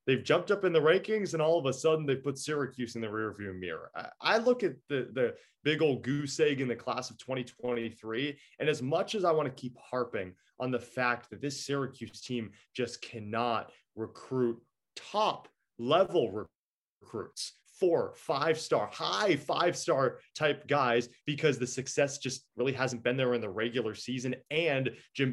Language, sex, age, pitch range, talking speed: English, male, 20-39, 120-145 Hz, 175 wpm